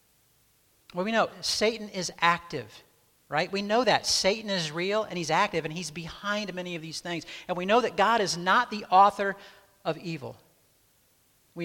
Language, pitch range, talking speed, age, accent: English, 150-200 Hz, 180 wpm, 50-69, American